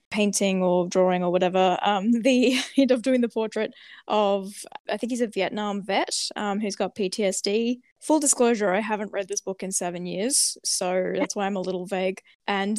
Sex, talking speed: female, 190 wpm